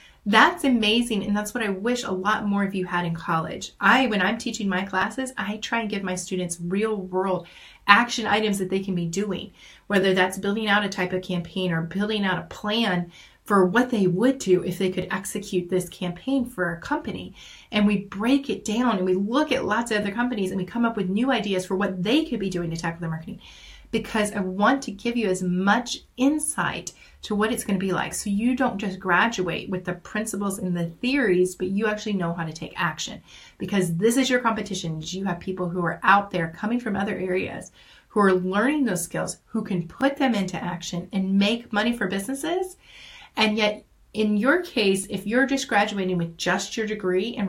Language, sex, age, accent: English, female, 30-49, American